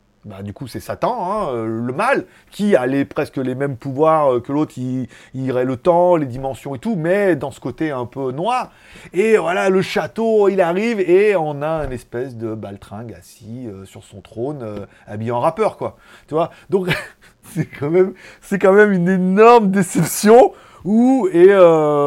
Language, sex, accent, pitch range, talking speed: French, male, French, 140-200 Hz, 180 wpm